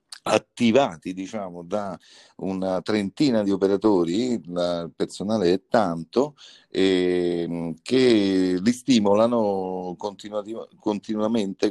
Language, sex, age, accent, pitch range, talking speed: Italian, male, 50-69, native, 90-110 Hz, 80 wpm